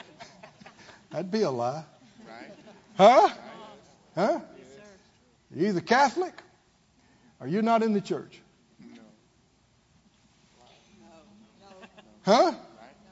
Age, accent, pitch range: 60-79, American, 205-320 Hz